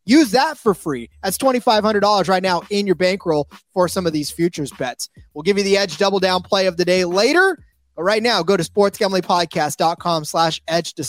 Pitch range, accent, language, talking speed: 155-200 Hz, American, English, 205 wpm